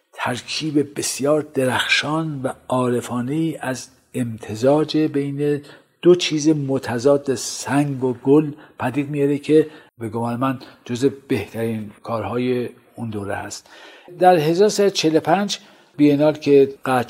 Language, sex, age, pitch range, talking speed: Persian, male, 50-69, 115-140 Hz, 110 wpm